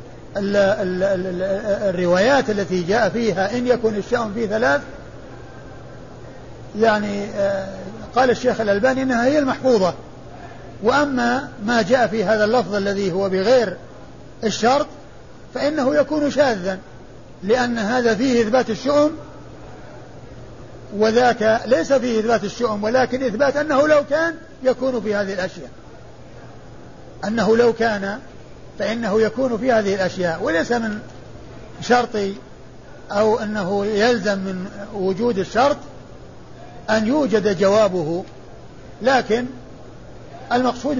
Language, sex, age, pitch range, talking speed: Arabic, male, 50-69, 195-250 Hz, 100 wpm